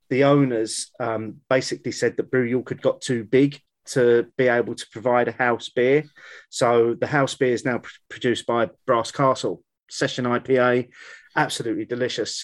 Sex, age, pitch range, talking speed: male, 30-49, 125-160 Hz, 165 wpm